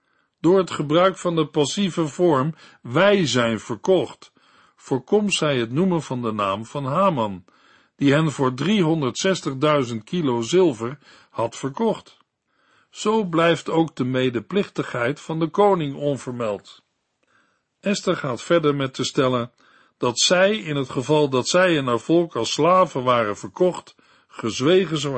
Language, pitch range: Dutch, 125-180 Hz